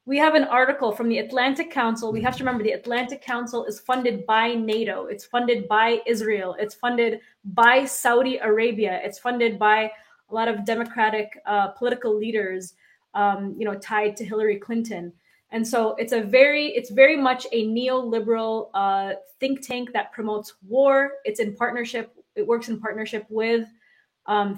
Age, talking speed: 20-39, 170 wpm